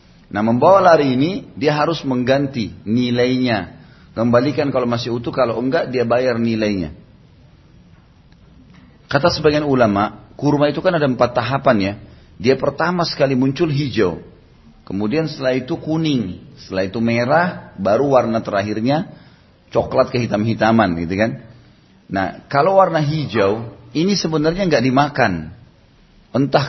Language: Indonesian